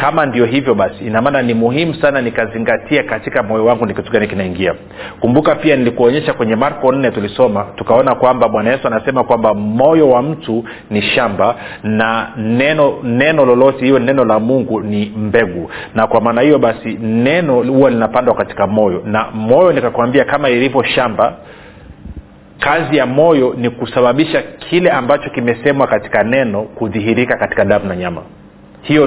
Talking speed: 155 wpm